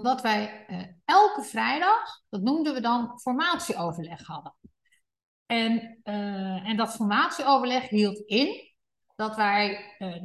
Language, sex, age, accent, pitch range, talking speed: Dutch, female, 50-69, Dutch, 195-270 Hz, 125 wpm